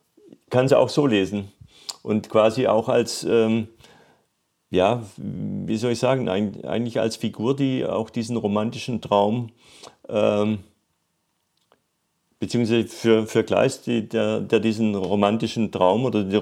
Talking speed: 135 wpm